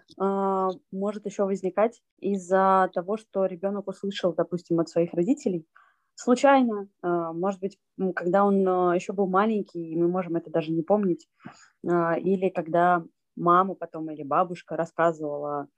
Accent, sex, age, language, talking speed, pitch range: native, female, 20-39, Russian, 130 wpm, 165-195 Hz